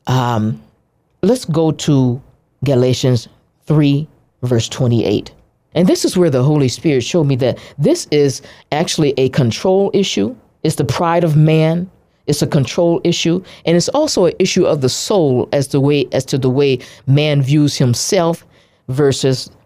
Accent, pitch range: American, 120-155 Hz